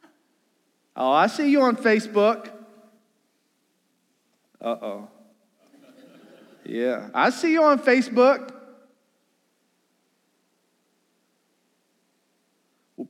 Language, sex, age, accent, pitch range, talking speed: English, male, 40-59, American, 150-250 Hz, 70 wpm